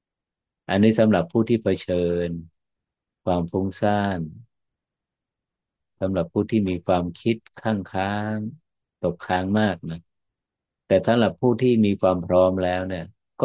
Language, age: Thai, 50-69